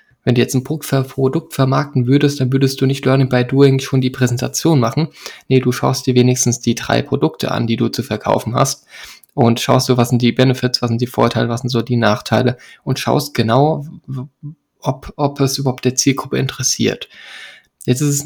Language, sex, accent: German, male, German